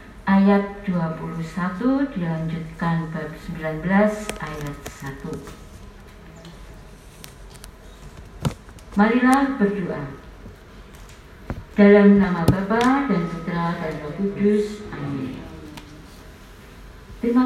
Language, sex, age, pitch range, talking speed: Indonesian, female, 40-59, 160-215 Hz, 65 wpm